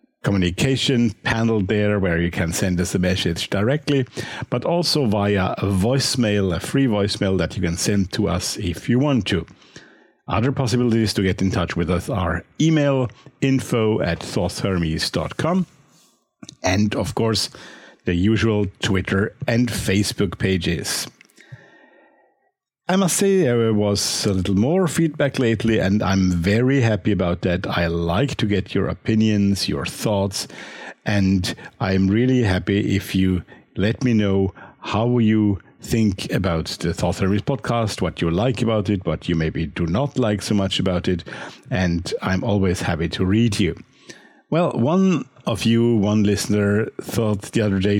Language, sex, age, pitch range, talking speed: English, male, 50-69, 95-120 Hz, 155 wpm